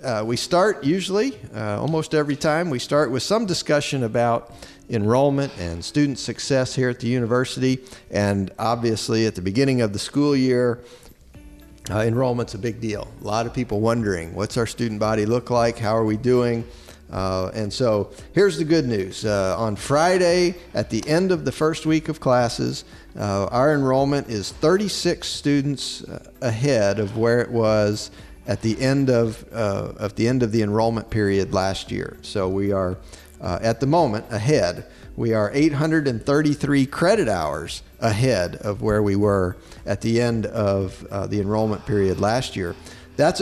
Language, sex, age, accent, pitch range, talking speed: English, male, 50-69, American, 105-135 Hz, 170 wpm